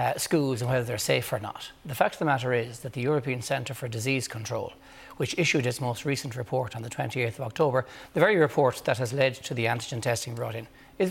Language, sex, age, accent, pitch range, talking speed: English, male, 60-79, Irish, 125-165 Hz, 245 wpm